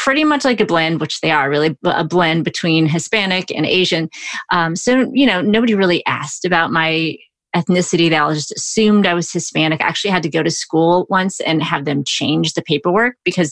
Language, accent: English, American